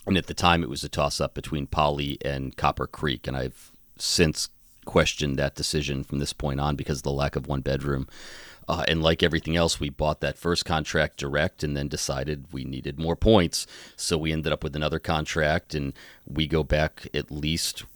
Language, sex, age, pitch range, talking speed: English, male, 40-59, 70-75 Hz, 195 wpm